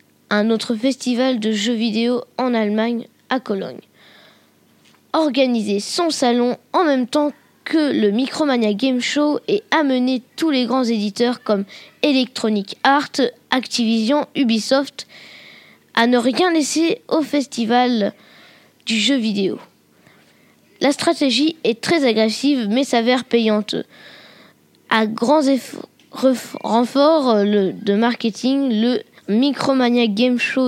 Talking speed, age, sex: 115 wpm, 20-39, female